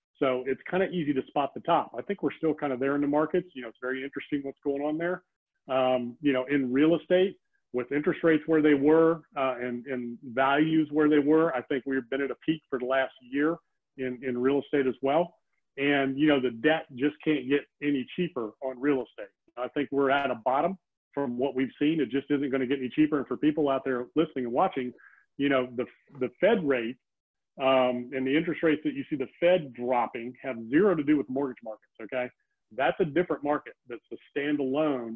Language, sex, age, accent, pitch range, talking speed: English, male, 40-59, American, 130-155 Hz, 230 wpm